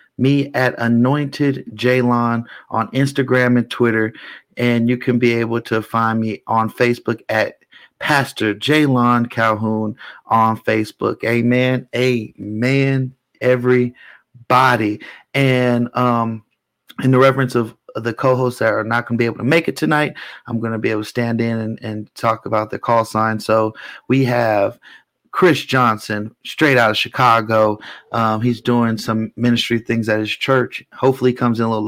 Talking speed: 165 wpm